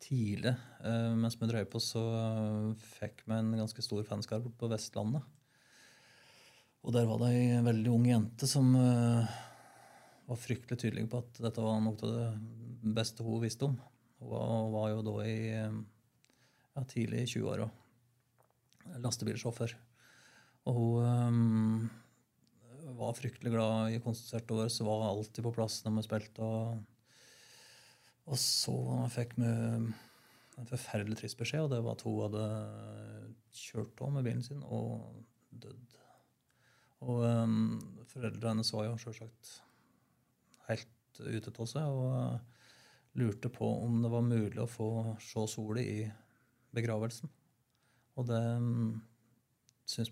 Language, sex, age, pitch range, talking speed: English, male, 30-49, 110-125 Hz, 135 wpm